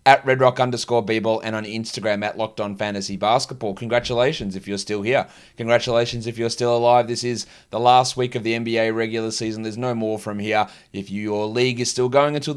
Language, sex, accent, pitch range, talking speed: English, male, Australian, 110-135 Hz, 185 wpm